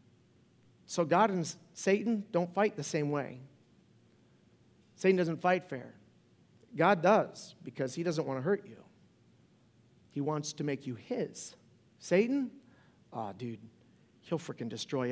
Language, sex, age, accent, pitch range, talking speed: English, male, 40-59, American, 145-200 Hz, 135 wpm